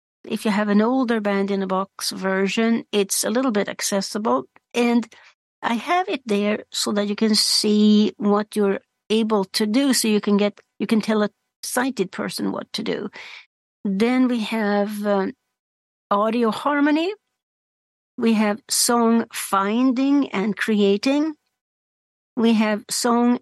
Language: English